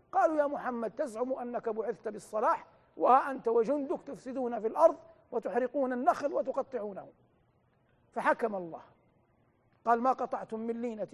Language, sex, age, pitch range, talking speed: Arabic, male, 50-69, 210-265 Hz, 125 wpm